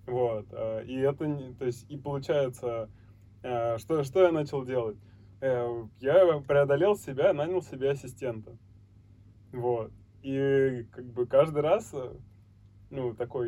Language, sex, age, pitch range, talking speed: Russian, male, 20-39, 110-140 Hz, 115 wpm